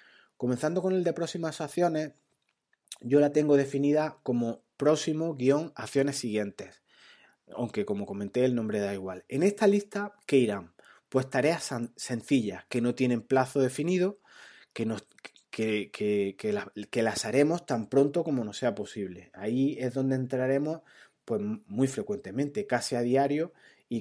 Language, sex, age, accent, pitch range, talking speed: Spanish, male, 30-49, Argentinian, 115-150 Hz, 150 wpm